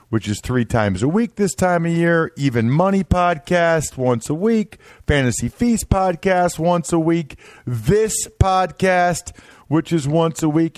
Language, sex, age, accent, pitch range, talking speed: English, male, 50-69, American, 110-165 Hz, 160 wpm